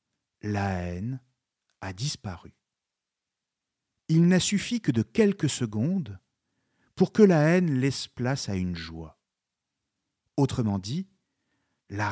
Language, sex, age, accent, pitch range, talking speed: French, male, 50-69, French, 105-160 Hz, 115 wpm